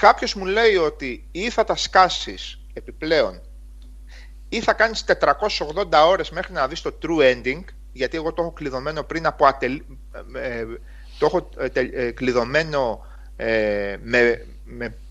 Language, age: Greek, 30-49